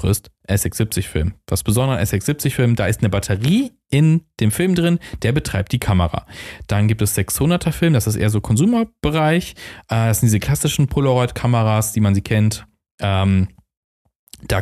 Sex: male